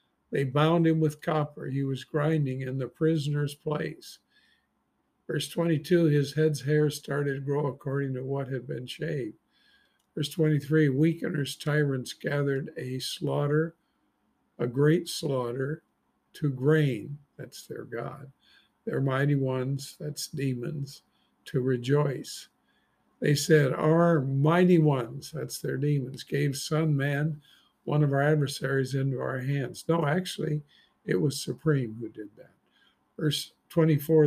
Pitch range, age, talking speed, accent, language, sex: 135-155 Hz, 50-69, 135 wpm, American, English, male